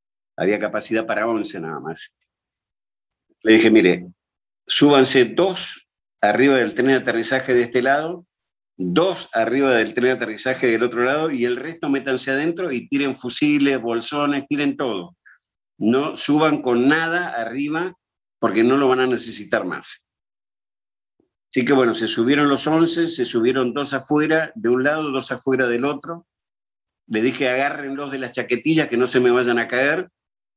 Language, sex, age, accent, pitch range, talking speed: Spanish, male, 50-69, Argentinian, 125-165 Hz, 160 wpm